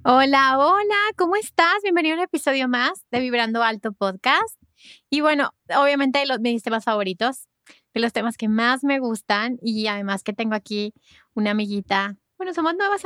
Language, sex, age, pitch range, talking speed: Spanish, female, 20-39, 220-270 Hz, 170 wpm